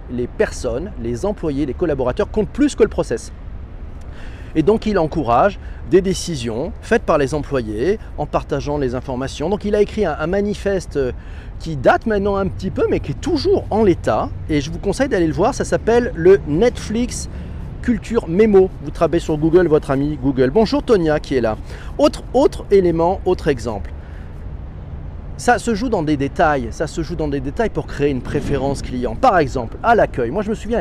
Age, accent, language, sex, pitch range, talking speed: 40-59, French, French, male, 130-195 Hz, 195 wpm